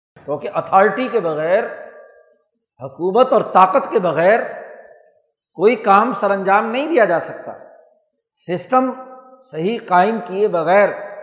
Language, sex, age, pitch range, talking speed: Urdu, male, 60-79, 175-230 Hz, 120 wpm